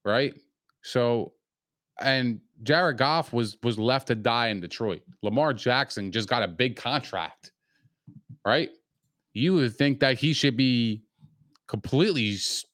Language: English